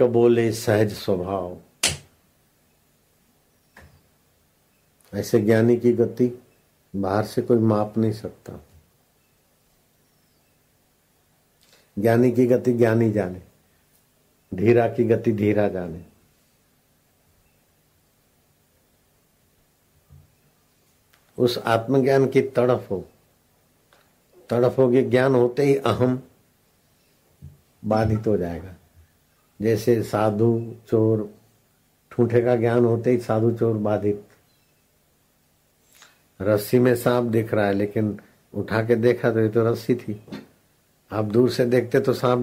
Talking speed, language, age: 100 wpm, Hindi, 60-79